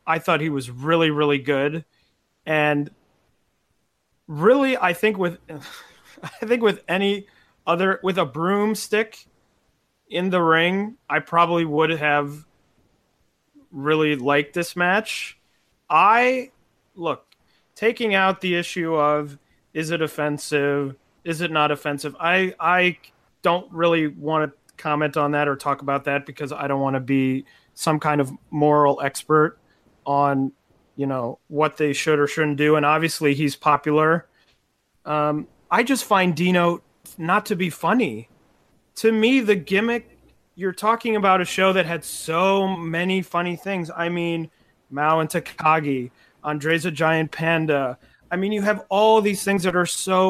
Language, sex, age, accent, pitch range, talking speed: English, male, 30-49, American, 150-190 Hz, 150 wpm